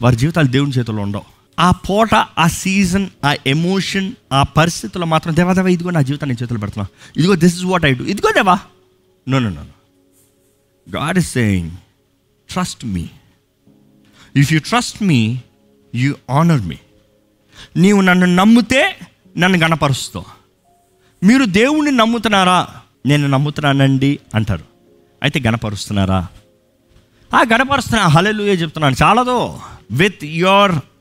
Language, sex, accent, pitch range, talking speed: Telugu, male, native, 120-190 Hz, 125 wpm